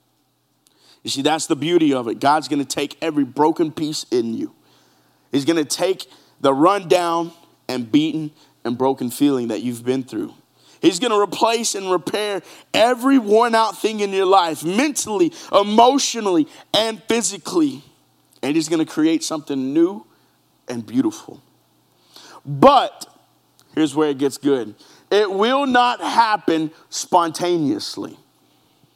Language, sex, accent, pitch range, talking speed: English, male, American, 155-240 Hz, 140 wpm